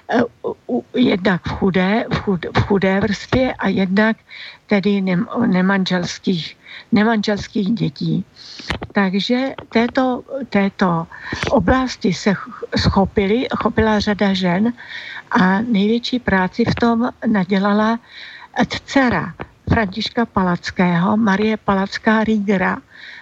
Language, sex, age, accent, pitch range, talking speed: Czech, female, 60-79, native, 195-230 Hz, 85 wpm